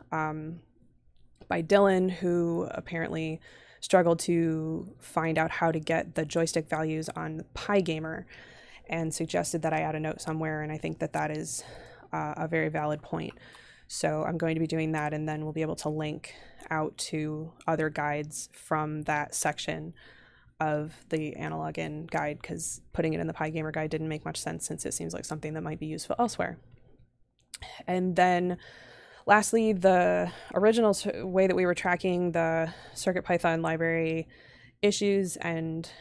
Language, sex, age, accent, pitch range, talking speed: English, female, 20-39, American, 155-170 Hz, 170 wpm